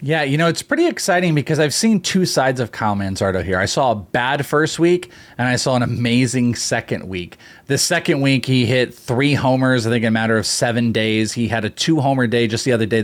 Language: English